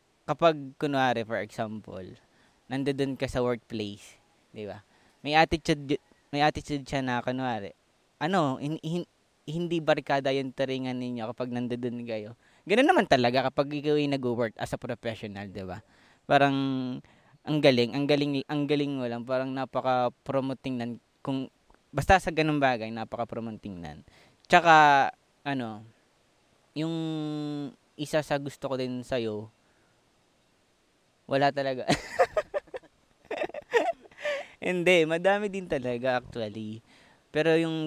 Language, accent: Filipino, native